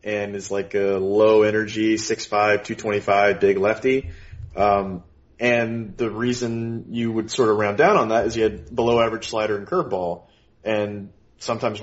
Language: English